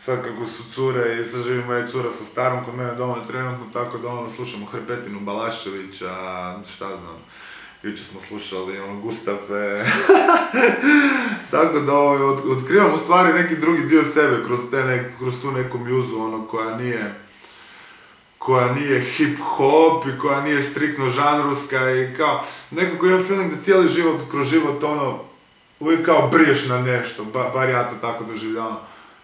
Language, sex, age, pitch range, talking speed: Croatian, male, 20-39, 115-150 Hz, 165 wpm